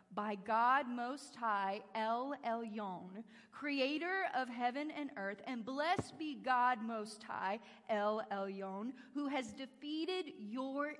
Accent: American